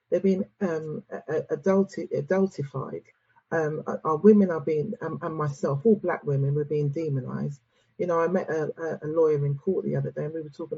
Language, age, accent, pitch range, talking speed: English, 40-59, British, 155-210 Hz, 195 wpm